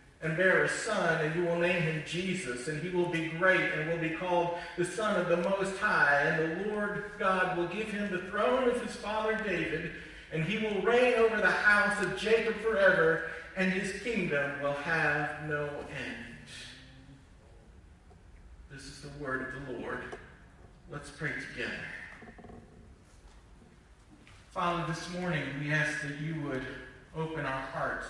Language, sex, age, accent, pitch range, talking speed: English, male, 40-59, American, 145-180 Hz, 160 wpm